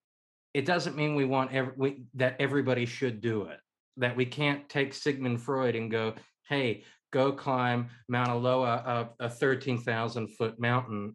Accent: American